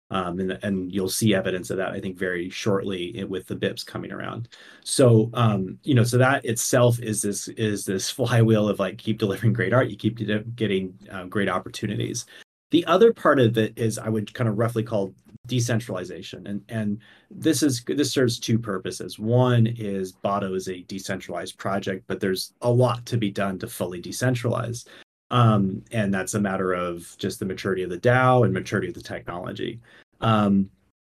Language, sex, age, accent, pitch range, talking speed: English, male, 30-49, American, 95-120 Hz, 190 wpm